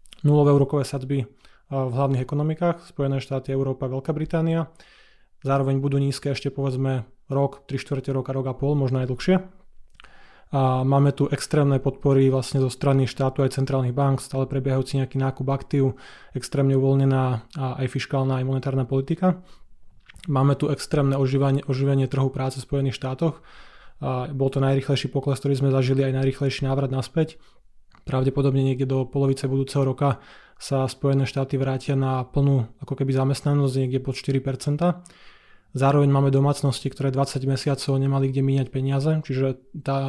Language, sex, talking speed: Slovak, male, 155 wpm